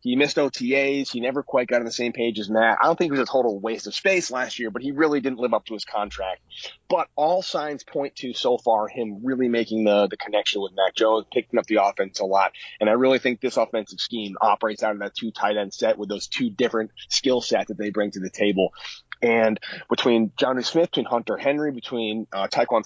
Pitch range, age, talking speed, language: 110-135 Hz, 30-49, 245 wpm, English